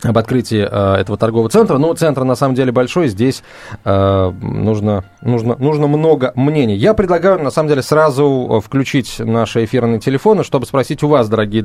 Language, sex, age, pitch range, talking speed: Russian, male, 20-39, 110-150 Hz, 175 wpm